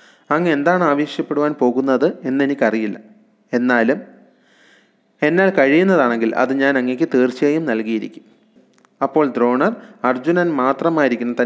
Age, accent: 30-49, native